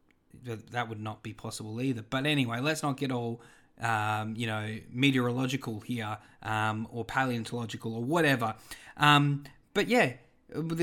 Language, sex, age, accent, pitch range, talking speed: English, male, 20-39, Australian, 125-155 Hz, 140 wpm